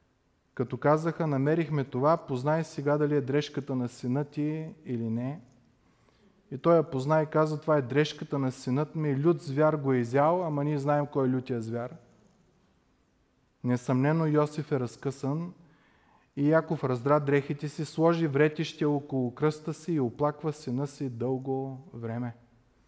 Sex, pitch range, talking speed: male, 125-150 Hz, 150 wpm